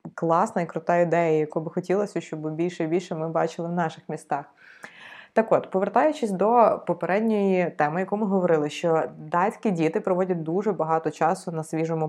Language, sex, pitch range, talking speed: Ukrainian, female, 160-190 Hz, 170 wpm